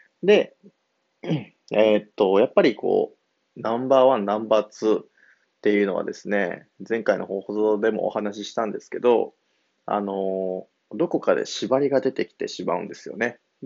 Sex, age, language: male, 20-39, Japanese